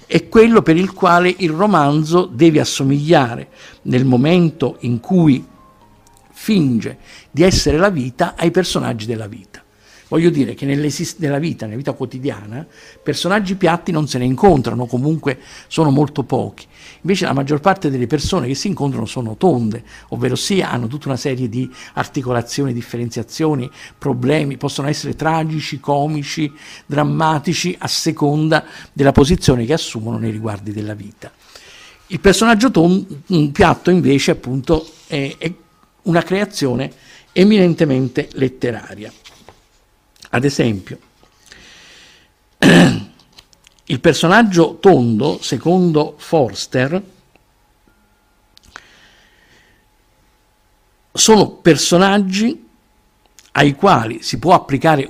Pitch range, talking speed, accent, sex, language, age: 120-160 Hz, 110 wpm, native, male, Italian, 50-69